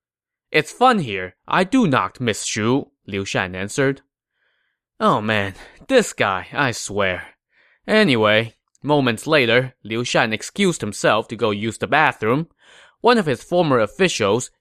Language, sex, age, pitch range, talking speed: English, male, 20-39, 105-155 Hz, 140 wpm